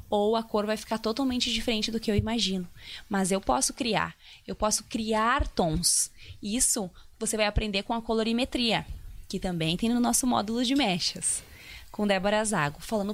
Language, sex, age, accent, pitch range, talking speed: Portuguese, female, 20-39, Brazilian, 210-250 Hz, 175 wpm